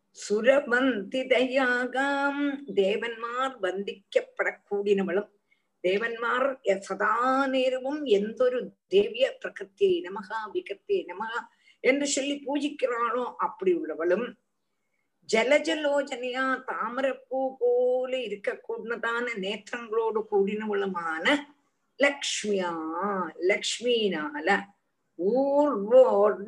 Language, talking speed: Tamil, 60 wpm